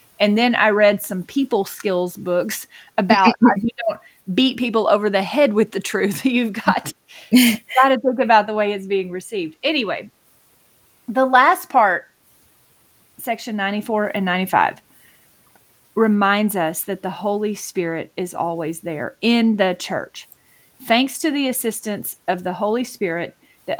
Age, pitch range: 30-49, 190-235 Hz